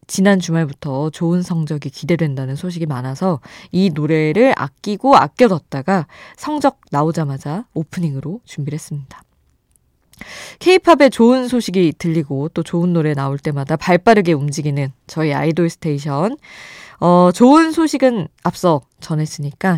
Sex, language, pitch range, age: female, Korean, 150-215 Hz, 20-39